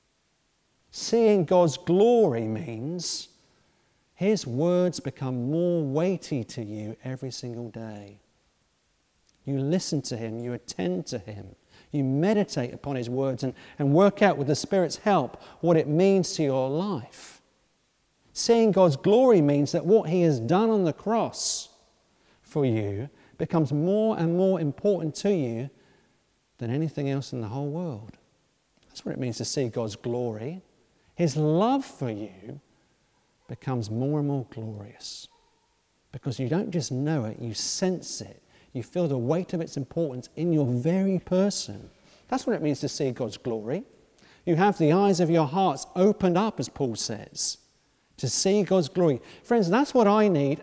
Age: 40-59